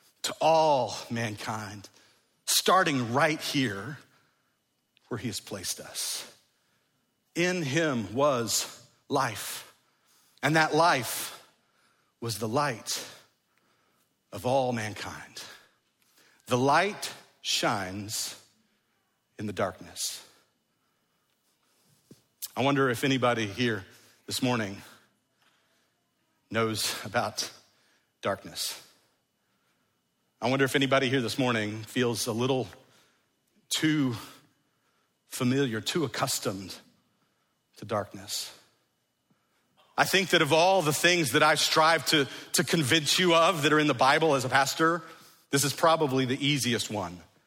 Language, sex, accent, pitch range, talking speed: English, male, American, 115-155 Hz, 105 wpm